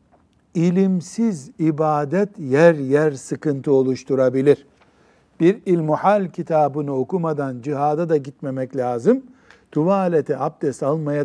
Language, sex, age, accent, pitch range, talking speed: Turkish, male, 60-79, native, 135-185 Hz, 90 wpm